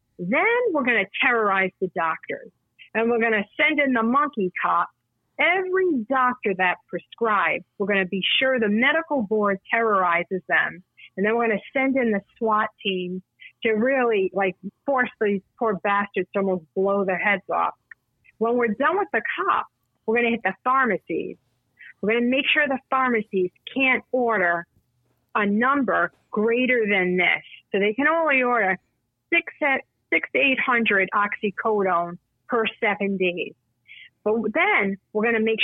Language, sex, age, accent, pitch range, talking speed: English, female, 40-59, American, 190-240 Hz, 165 wpm